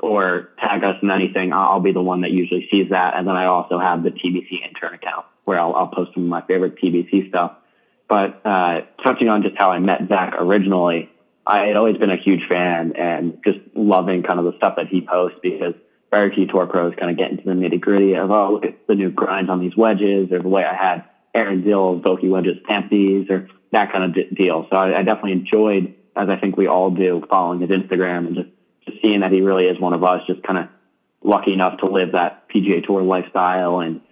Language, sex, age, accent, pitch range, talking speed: English, male, 20-39, American, 90-100 Hz, 235 wpm